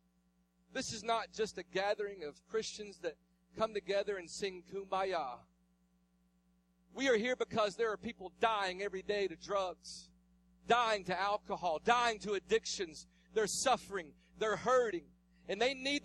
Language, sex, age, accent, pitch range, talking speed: English, male, 40-59, American, 180-255 Hz, 145 wpm